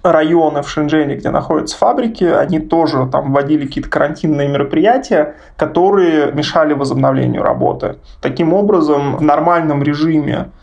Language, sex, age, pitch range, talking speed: Russian, male, 20-39, 140-155 Hz, 125 wpm